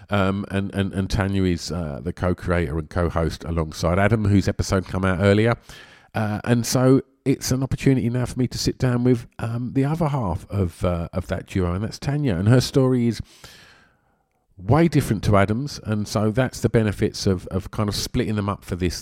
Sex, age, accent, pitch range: male, 50-69, British, 85-100 Hz